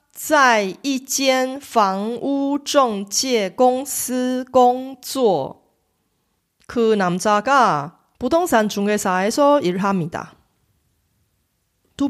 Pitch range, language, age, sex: 175-260 Hz, Korean, 30-49, female